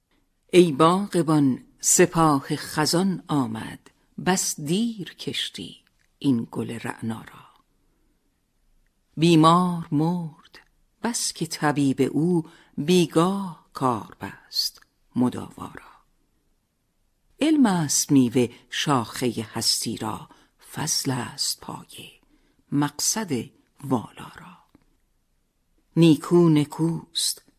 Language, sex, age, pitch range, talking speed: Persian, female, 50-69, 130-170 Hz, 80 wpm